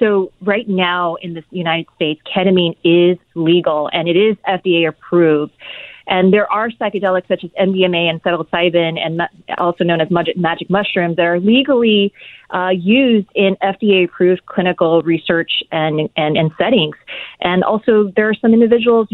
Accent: American